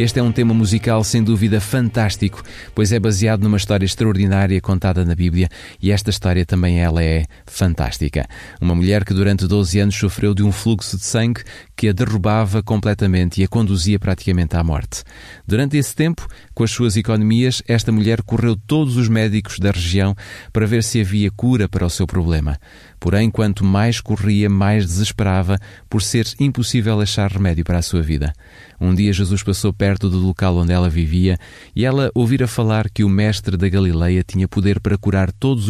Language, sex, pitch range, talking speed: Portuguese, male, 95-110 Hz, 180 wpm